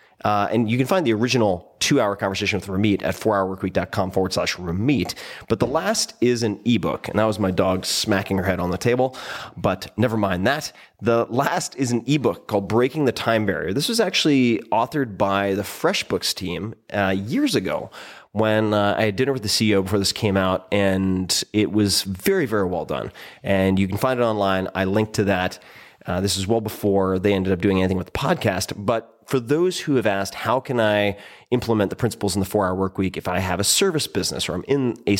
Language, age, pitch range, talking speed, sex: English, 30-49, 95-120 Hz, 220 wpm, male